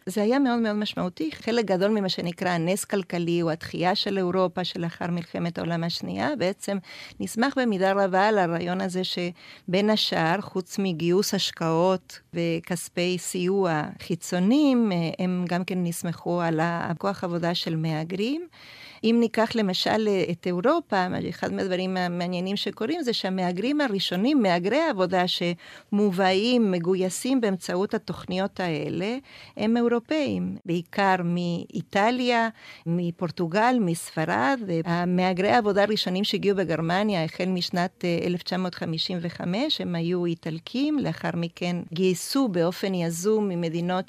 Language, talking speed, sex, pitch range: Hebrew, 115 wpm, female, 175-205 Hz